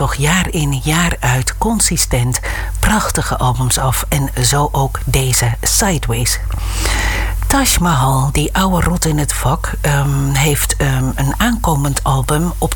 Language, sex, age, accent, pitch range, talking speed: Dutch, female, 60-79, Dutch, 130-160 Hz, 135 wpm